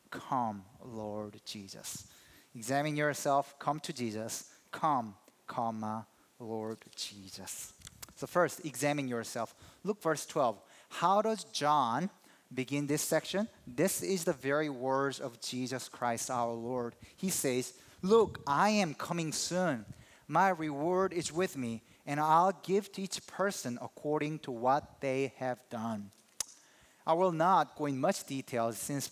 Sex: male